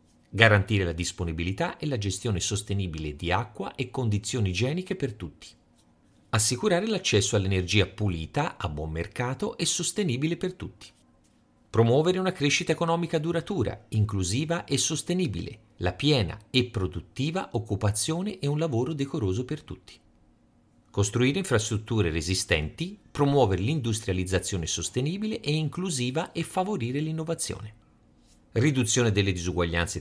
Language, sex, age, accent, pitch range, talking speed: Italian, male, 40-59, native, 95-150 Hz, 115 wpm